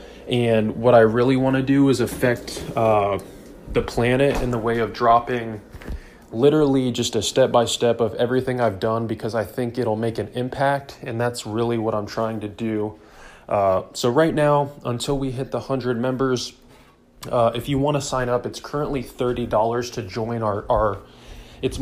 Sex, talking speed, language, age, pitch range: male, 185 wpm, English, 20-39, 115-130 Hz